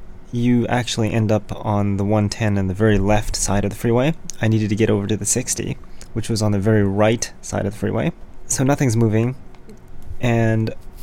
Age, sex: 20-39, male